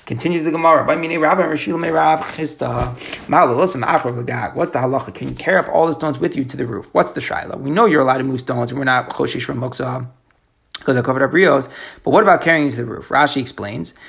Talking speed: 200 wpm